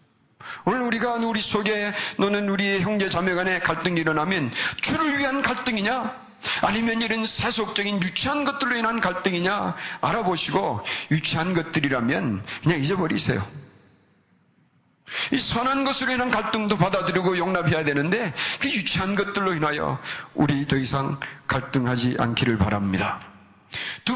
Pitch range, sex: 140-200 Hz, male